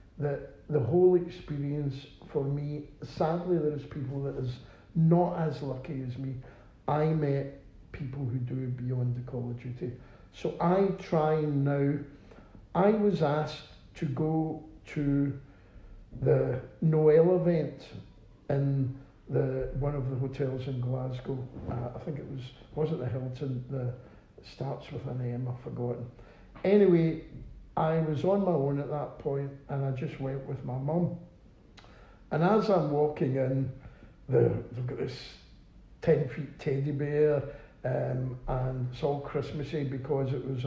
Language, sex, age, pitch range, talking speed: English, male, 60-79, 130-155 Hz, 150 wpm